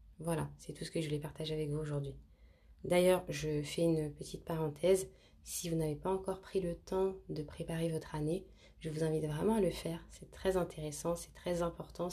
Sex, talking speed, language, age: female, 210 wpm, French, 20-39